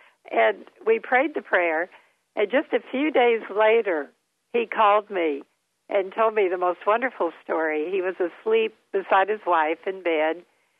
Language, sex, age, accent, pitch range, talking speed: English, female, 60-79, American, 180-250 Hz, 160 wpm